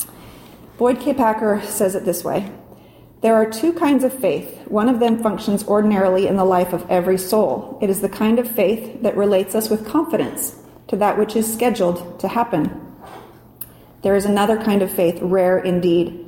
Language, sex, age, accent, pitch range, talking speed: English, female, 30-49, American, 185-225 Hz, 185 wpm